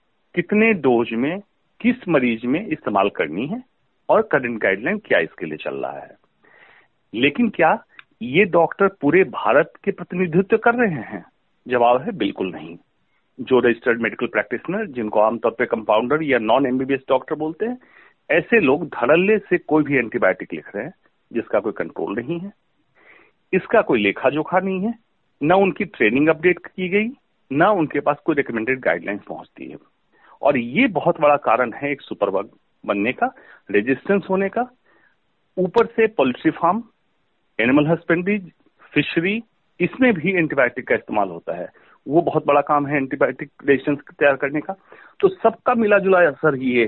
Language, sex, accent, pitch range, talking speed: Hindi, male, native, 140-210 Hz, 160 wpm